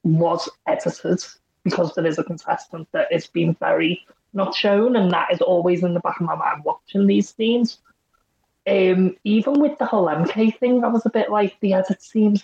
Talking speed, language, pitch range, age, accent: 200 wpm, English, 170-220 Hz, 30-49, British